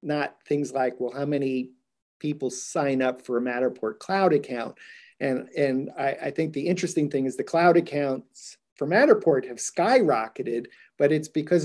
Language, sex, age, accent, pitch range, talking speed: English, male, 40-59, American, 135-175 Hz, 170 wpm